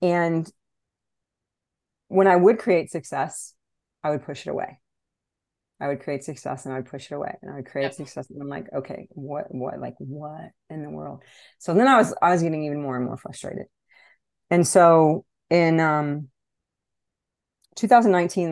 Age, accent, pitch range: 40-59, American, 150-195 Hz